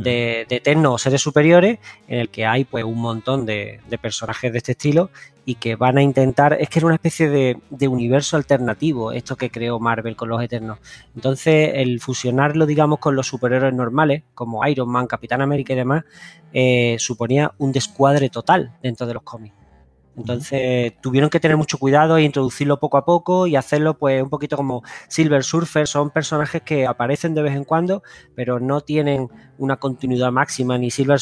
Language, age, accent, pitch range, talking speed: Spanish, 20-39, Spanish, 120-145 Hz, 190 wpm